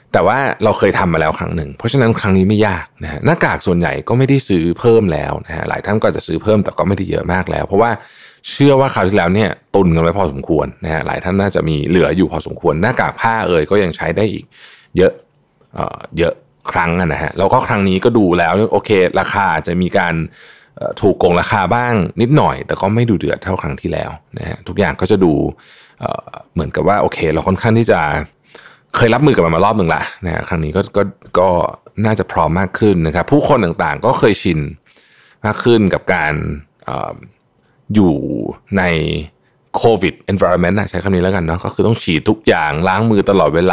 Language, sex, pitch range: Thai, male, 85-110 Hz